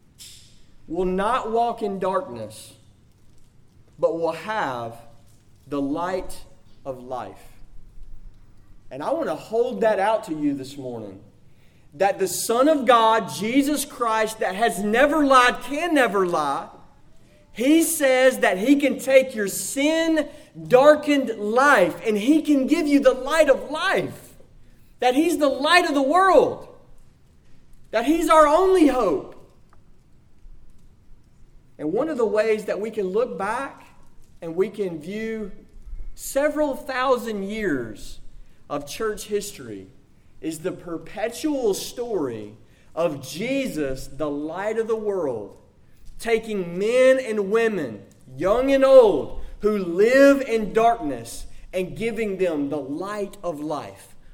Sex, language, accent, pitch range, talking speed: male, English, American, 160-260 Hz, 130 wpm